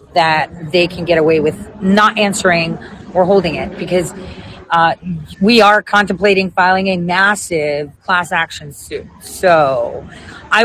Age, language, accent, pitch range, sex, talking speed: 30-49, English, American, 165-215 Hz, female, 135 wpm